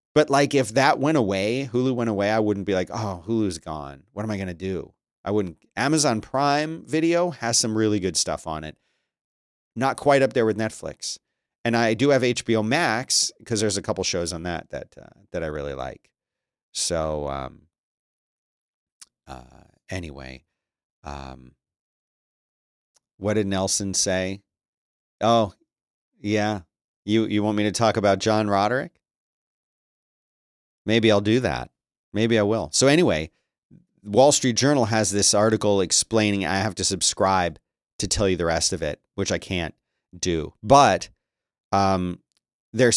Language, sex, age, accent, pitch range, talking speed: English, male, 40-59, American, 95-115 Hz, 160 wpm